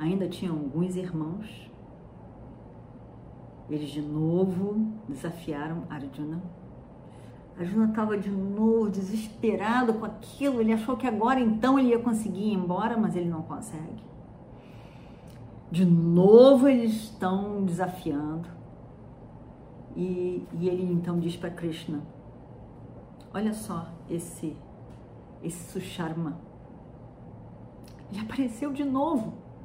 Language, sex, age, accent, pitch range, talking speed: Portuguese, female, 40-59, Brazilian, 170-240 Hz, 105 wpm